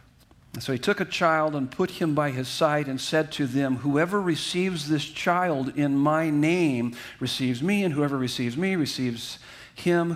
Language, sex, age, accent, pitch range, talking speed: English, male, 50-69, American, 130-165 Hz, 175 wpm